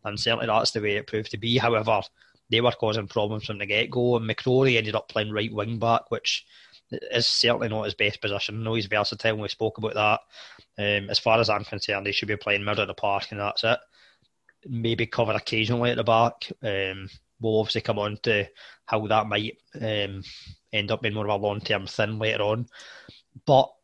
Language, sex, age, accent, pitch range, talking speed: English, male, 20-39, British, 105-120 Hz, 205 wpm